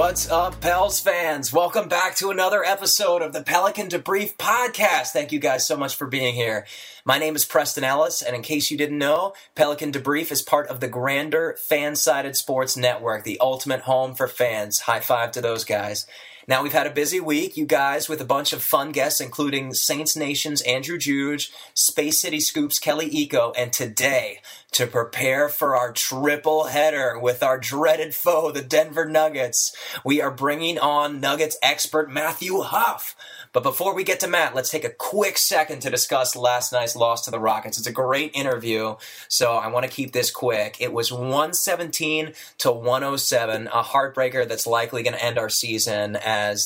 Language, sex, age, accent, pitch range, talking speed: English, male, 20-39, American, 125-155 Hz, 185 wpm